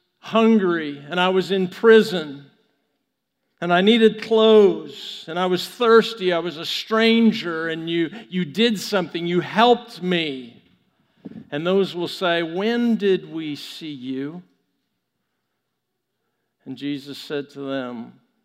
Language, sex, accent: English, male, American